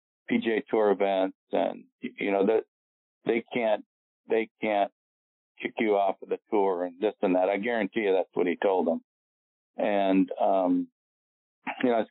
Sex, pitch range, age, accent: male, 95-115 Hz, 50-69, American